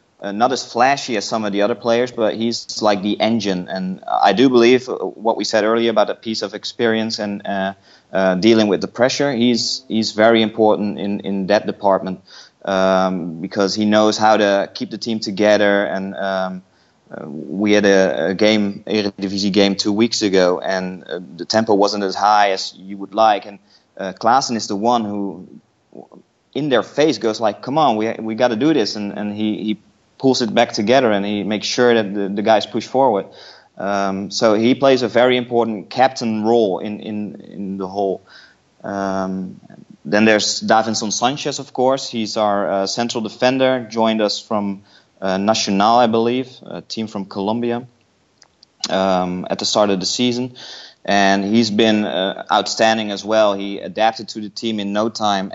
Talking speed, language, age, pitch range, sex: 190 wpm, English, 30-49, 100-115 Hz, male